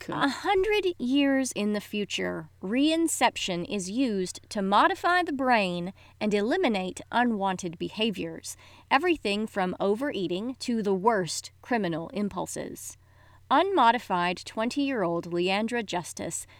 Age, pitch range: 30-49, 180-270 Hz